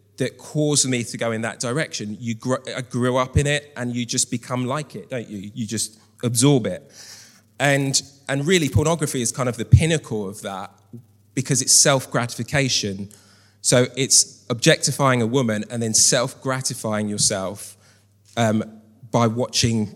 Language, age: English, 20-39